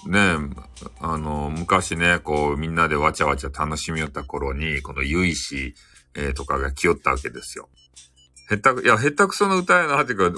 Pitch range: 70-105 Hz